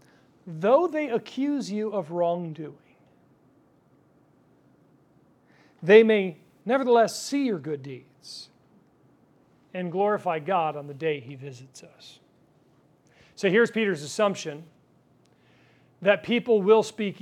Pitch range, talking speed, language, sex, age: 155-225 Hz, 105 wpm, English, male, 40-59